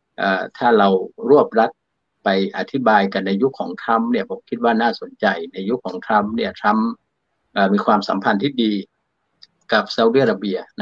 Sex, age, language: male, 60-79, Thai